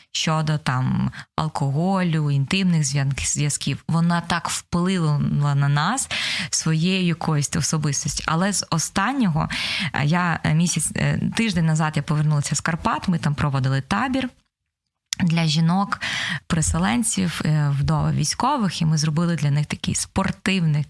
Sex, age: female, 20-39